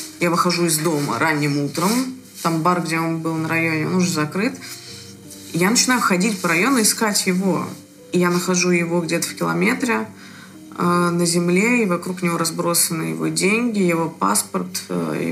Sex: female